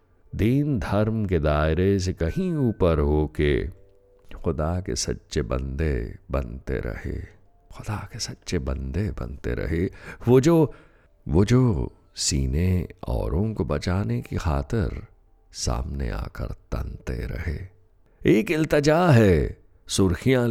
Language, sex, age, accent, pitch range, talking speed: Hindi, male, 60-79, native, 80-120 Hz, 115 wpm